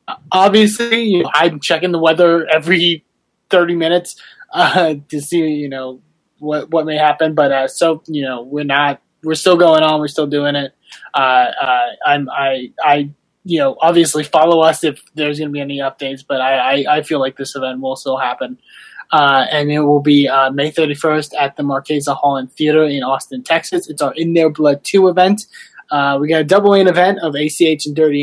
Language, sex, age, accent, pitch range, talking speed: English, male, 20-39, American, 140-170 Hz, 205 wpm